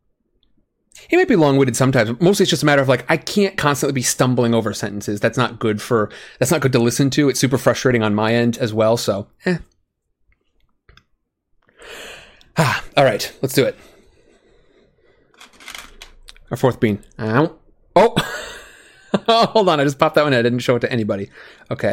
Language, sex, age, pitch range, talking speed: English, male, 30-49, 115-145 Hz, 180 wpm